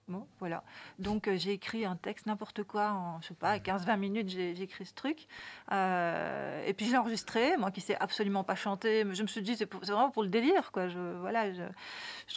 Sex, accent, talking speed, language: female, French, 245 wpm, French